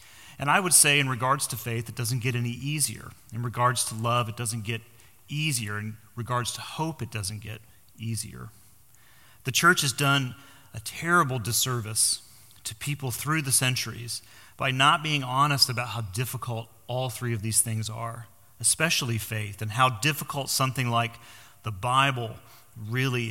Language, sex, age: English, male, 40-59